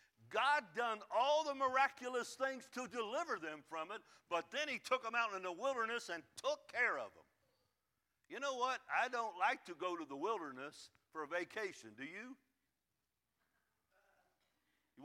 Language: English